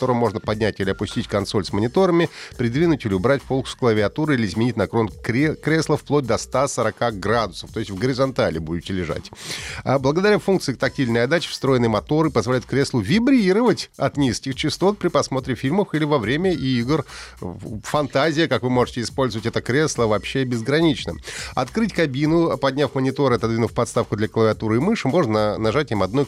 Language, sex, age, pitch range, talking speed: Russian, male, 30-49, 110-150 Hz, 160 wpm